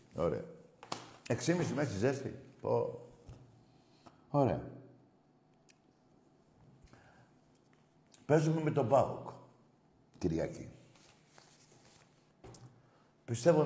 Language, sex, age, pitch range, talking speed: Greek, male, 60-79, 105-135 Hz, 55 wpm